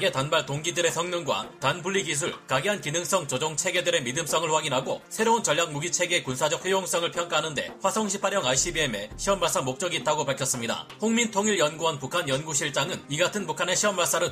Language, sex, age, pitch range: Korean, male, 30-49, 155-195 Hz